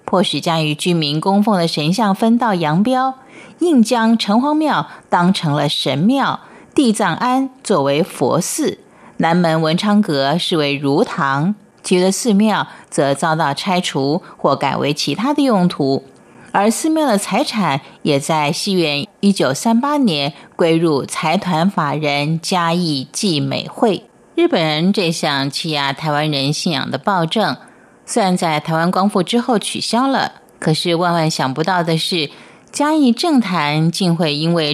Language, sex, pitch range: Chinese, female, 150-215 Hz